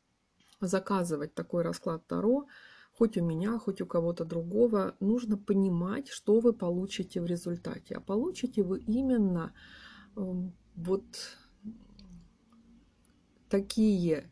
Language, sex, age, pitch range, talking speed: Russian, female, 30-49, 175-225 Hz, 100 wpm